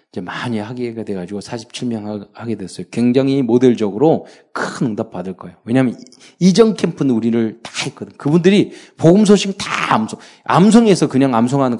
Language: Korean